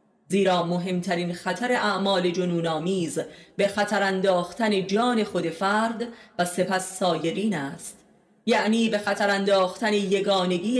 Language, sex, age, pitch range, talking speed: Persian, female, 30-49, 175-215 Hz, 100 wpm